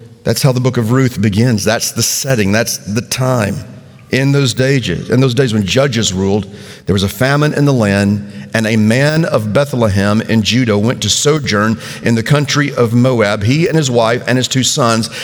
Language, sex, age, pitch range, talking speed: English, male, 50-69, 100-125 Hz, 205 wpm